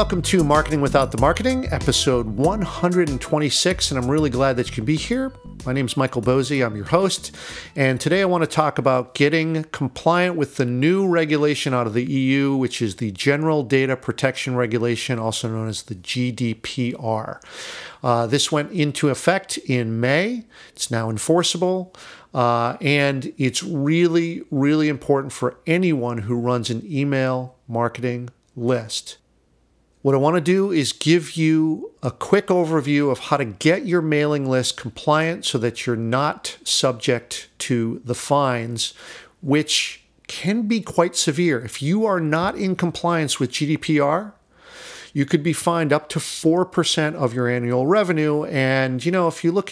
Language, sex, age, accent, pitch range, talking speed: English, male, 50-69, American, 125-170 Hz, 165 wpm